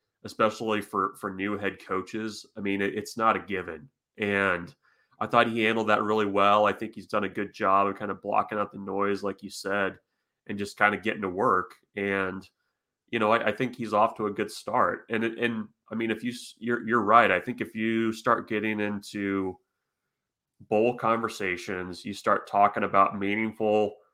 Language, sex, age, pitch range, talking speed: English, male, 30-49, 100-110 Hz, 200 wpm